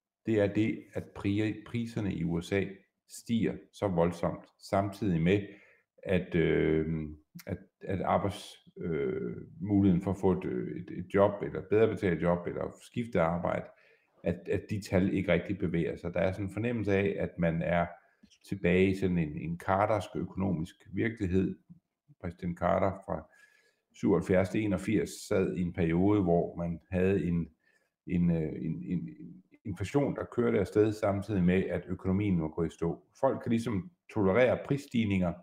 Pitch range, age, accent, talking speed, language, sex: 90-105 Hz, 60-79, native, 155 wpm, Danish, male